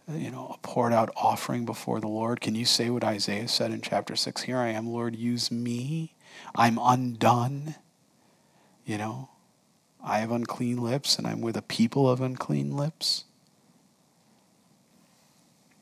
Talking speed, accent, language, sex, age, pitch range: 150 wpm, American, English, male, 40-59, 120-160 Hz